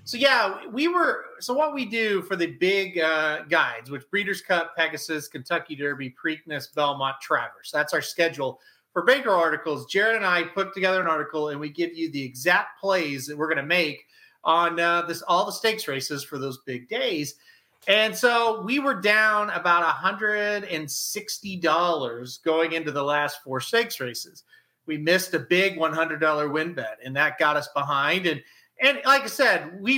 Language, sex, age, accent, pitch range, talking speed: English, male, 40-59, American, 150-190 Hz, 180 wpm